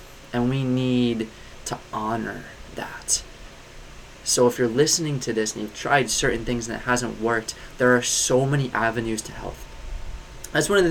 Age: 20-39